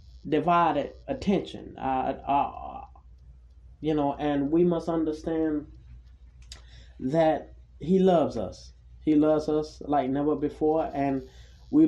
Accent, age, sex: American, 20-39, male